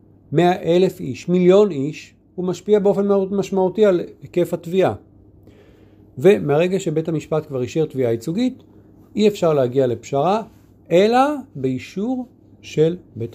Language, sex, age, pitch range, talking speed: Hebrew, male, 50-69, 105-165 Hz, 125 wpm